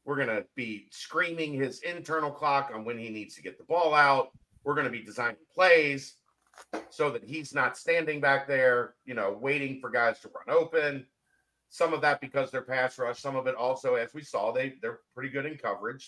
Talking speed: 215 wpm